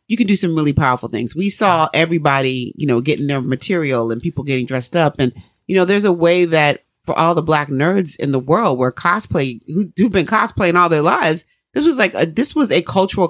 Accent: American